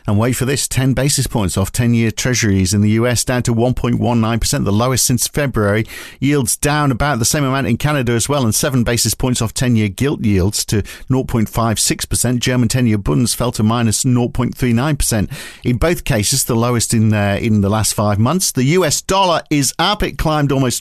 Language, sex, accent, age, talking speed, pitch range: English, male, British, 50-69, 195 wpm, 110-135 Hz